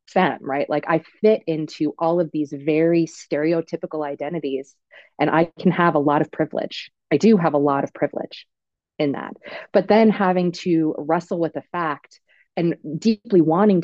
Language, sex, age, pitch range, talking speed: English, female, 30-49, 155-195 Hz, 175 wpm